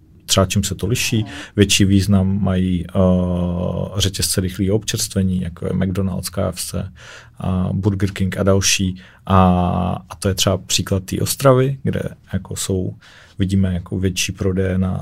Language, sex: Czech, male